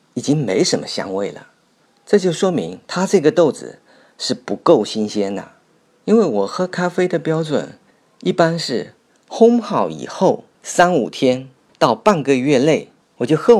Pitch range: 125-210 Hz